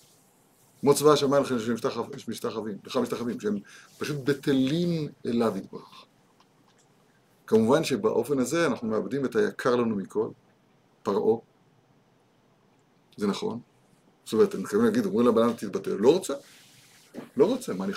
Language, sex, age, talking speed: Hebrew, male, 50-69, 125 wpm